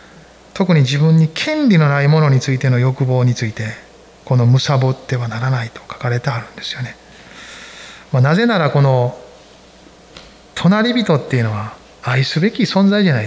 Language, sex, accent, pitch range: Japanese, male, native, 125-180 Hz